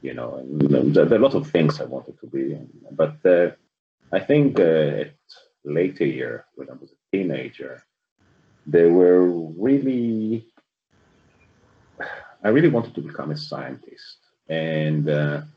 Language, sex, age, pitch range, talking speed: English, male, 30-49, 70-80 Hz, 145 wpm